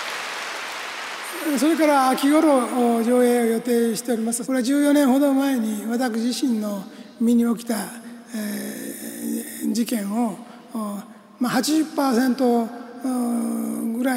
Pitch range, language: 225-255 Hz, Japanese